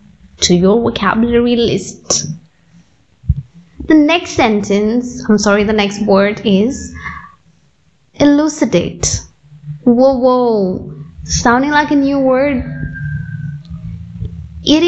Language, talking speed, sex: English, 90 wpm, female